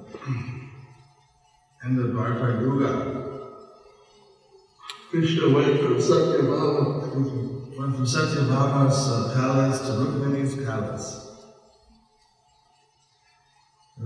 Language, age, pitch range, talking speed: English, 50-69, 115-130 Hz, 65 wpm